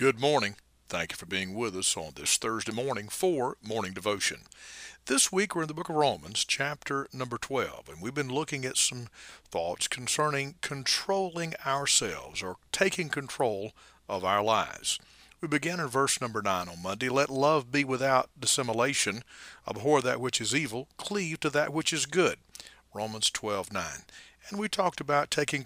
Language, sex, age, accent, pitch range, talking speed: English, male, 50-69, American, 115-150 Hz, 170 wpm